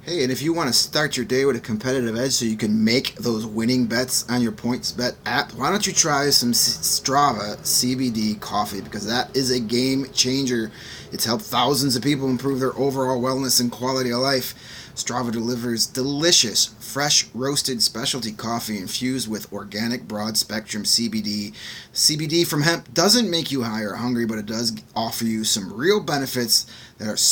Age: 30-49